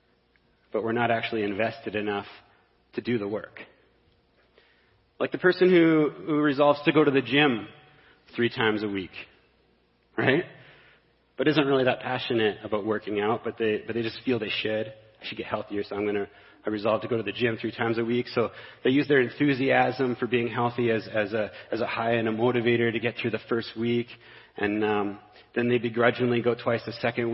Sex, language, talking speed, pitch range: male, English, 200 wpm, 115-130 Hz